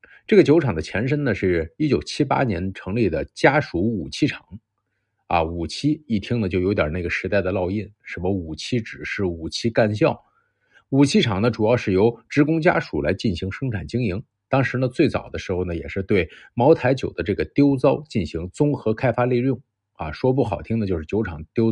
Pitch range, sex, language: 95-125 Hz, male, Chinese